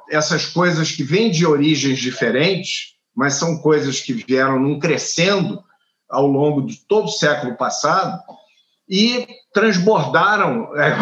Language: Portuguese